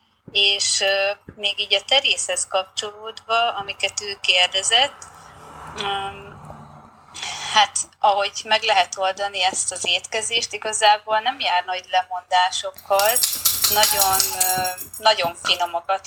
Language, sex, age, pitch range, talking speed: Hungarian, female, 30-49, 190-210 Hz, 95 wpm